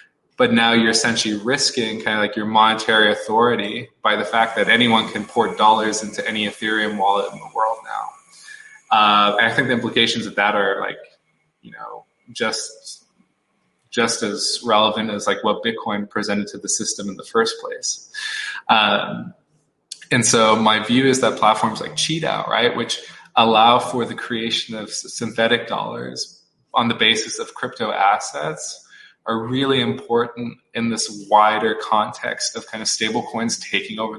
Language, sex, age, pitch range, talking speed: English, male, 20-39, 105-130 Hz, 165 wpm